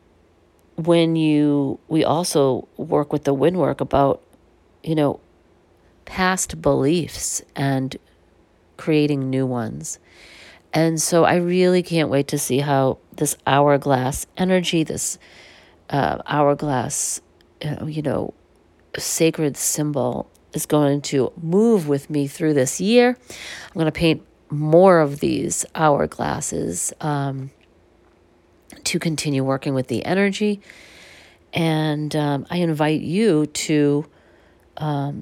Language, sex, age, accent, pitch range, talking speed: English, female, 40-59, American, 140-165 Hz, 120 wpm